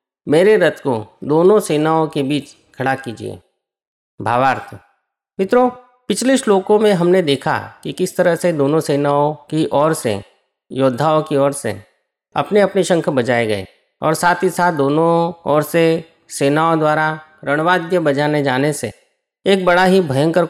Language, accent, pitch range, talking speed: Hindi, native, 140-185 Hz, 150 wpm